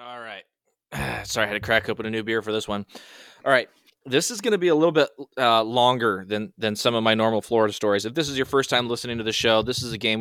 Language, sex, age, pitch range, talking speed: English, male, 20-39, 105-125 Hz, 280 wpm